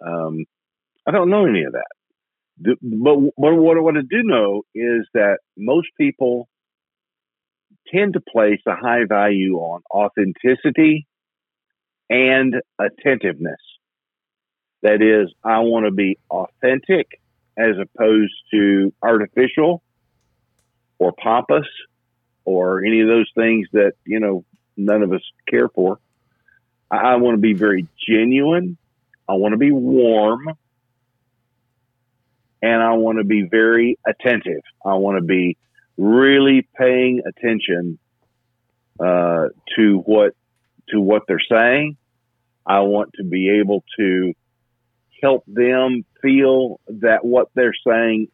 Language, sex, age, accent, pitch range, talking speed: English, male, 50-69, American, 105-125 Hz, 125 wpm